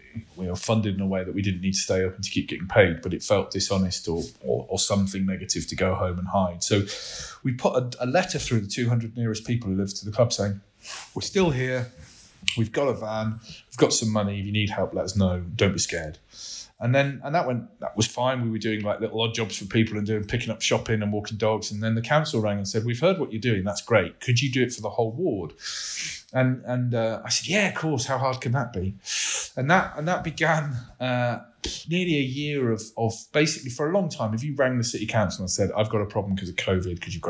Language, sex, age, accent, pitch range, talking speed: English, male, 30-49, British, 100-125 Hz, 260 wpm